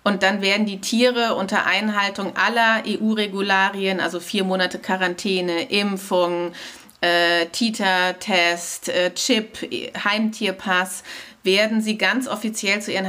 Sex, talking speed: female, 105 wpm